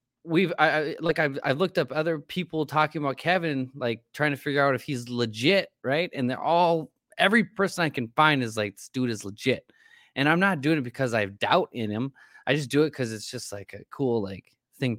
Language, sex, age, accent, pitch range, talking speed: English, male, 20-39, American, 120-165 Hz, 235 wpm